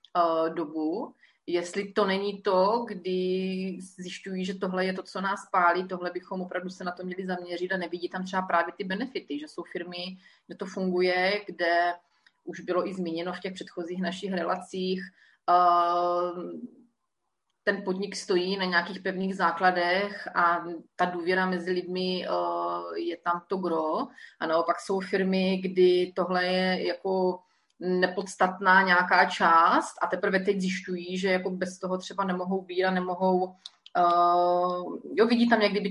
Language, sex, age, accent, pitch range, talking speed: Czech, female, 30-49, native, 175-195 Hz, 150 wpm